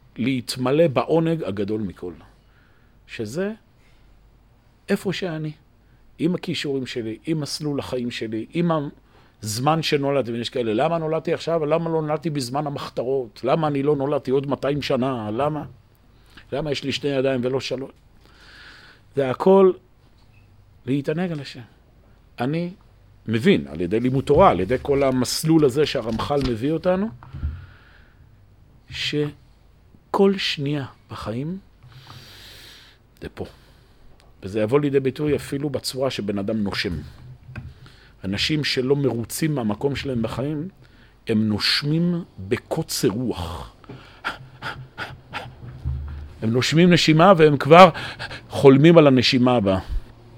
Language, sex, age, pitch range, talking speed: Hebrew, male, 50-69, 110-145 Hz, 115 wpm